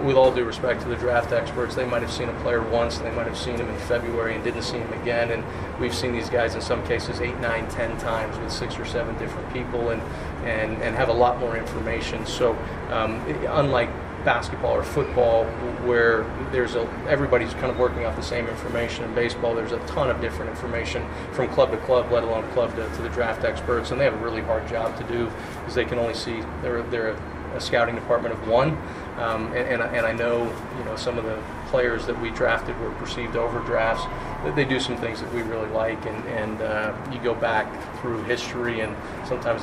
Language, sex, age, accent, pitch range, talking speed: English, male, 30-49, American, 115-120 Hz, 225 wpm